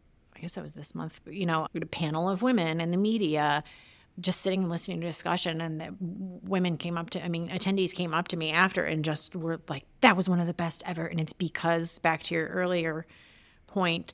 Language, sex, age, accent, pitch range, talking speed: English, female, 30-49, American, 165-190 Hz, 230 wpm